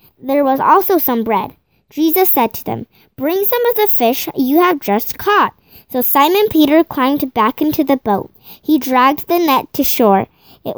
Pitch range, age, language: 240-325 Hz, 10-29, Korean